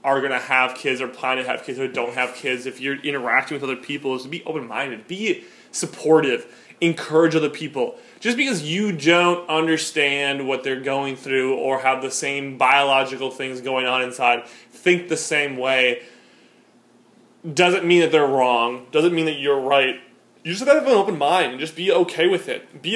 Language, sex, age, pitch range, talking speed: English, male, 20-39, 125-155 Hz, 200 wpm